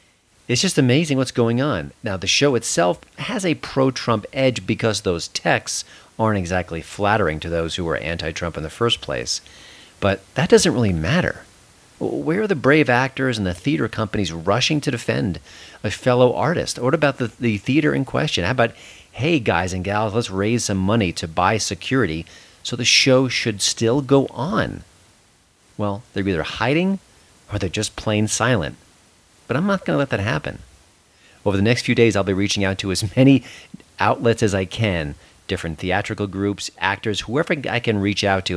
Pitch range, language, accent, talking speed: 95-125 Hz, English, American, 185 wpm